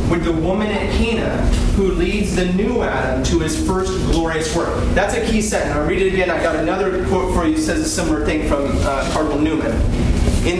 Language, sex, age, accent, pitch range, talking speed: English, male, 30-49, American, 160-215 Hz, 220 wpm